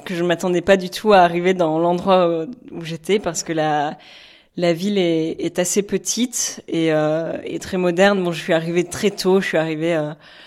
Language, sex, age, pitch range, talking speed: French, female, 20-39, 165-200 Hz, 210 wpm